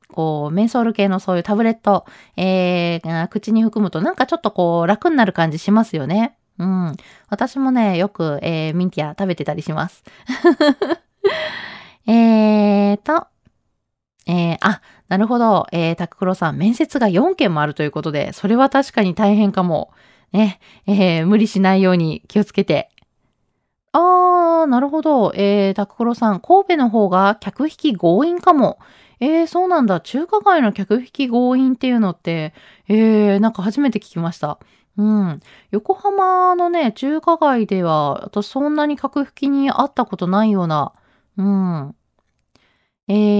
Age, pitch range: 20-39, 185-270 Hz